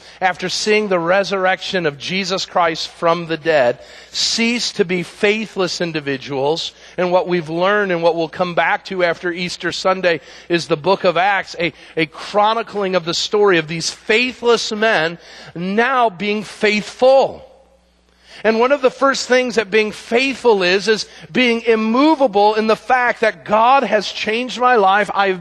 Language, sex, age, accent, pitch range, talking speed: English, male, 40-59, American, 170-225 Hz, 165 wpm